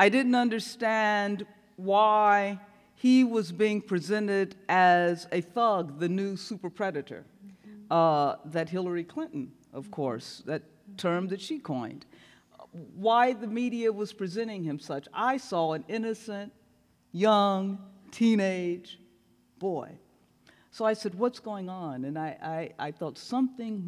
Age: 50-69